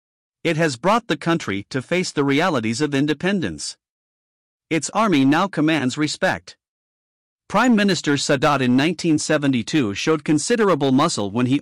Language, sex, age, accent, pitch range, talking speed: English, male, 50-69, American, 125-175 Hz, 135 wpm